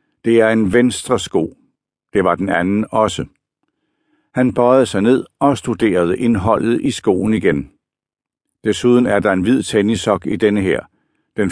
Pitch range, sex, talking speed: 95-125 Hz, male, 155 wpm